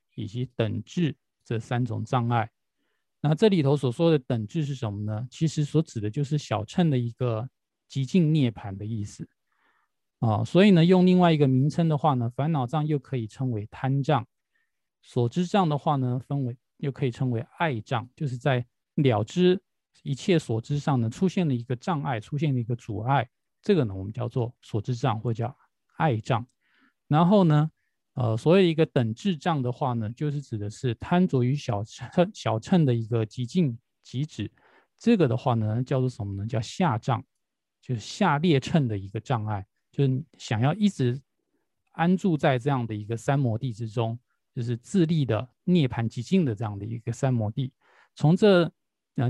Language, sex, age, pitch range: Chinese, male, 20-39, 115-155 Hz